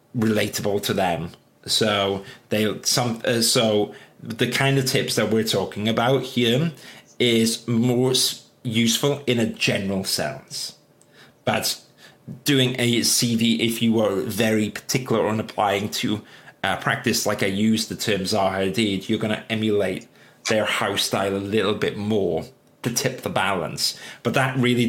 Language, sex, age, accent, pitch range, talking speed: English, male, 30-49, British, 110-130 Hz, 150 wpm